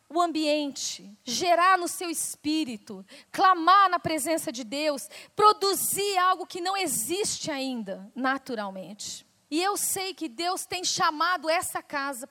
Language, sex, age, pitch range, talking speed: Portuguese, female, 40-59, 235-320 Hz, 130 wpm